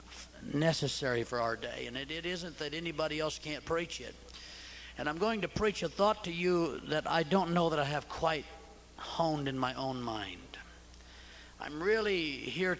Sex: male